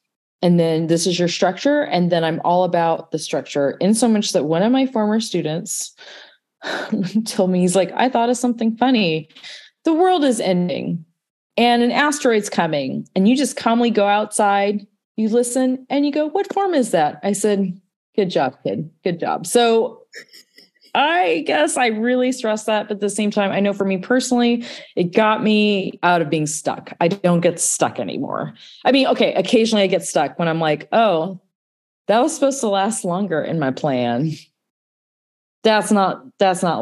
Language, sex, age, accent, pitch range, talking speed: English, female, 30-49, American, 165-230 Hz, 185 wpm